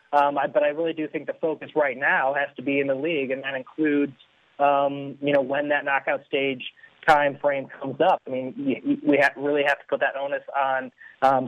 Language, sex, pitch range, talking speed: English, male, 135-155 Hz, 220 wpm